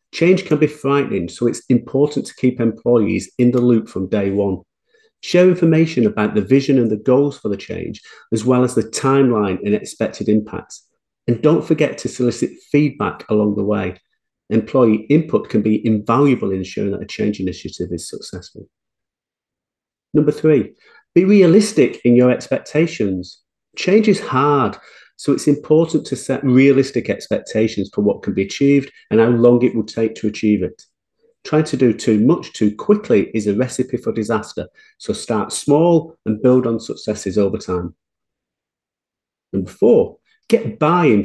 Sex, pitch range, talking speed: male, 105-150 Hz, 165 wpm